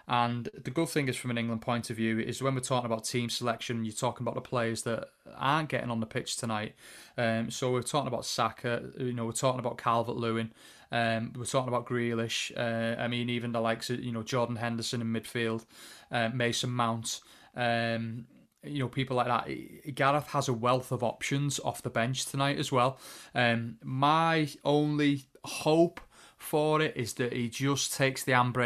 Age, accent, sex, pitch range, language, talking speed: 20-39, British, male, 115-130 Hz, English, 200 wpm